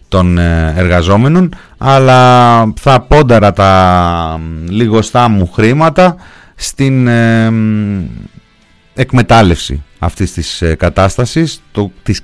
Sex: male